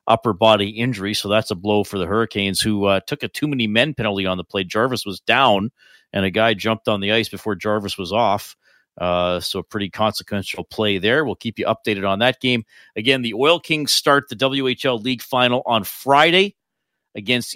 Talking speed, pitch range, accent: 210 wpm, 110-135 Hz, American